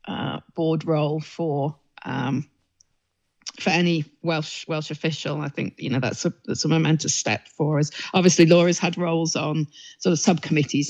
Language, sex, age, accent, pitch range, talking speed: English, female, 40-59, British, 145-170 Hz, 165 wpm